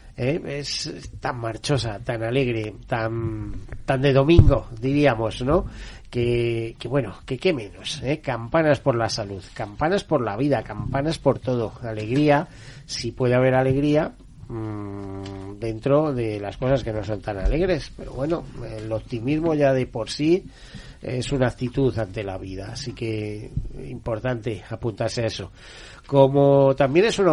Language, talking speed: Spanish, 150 wpm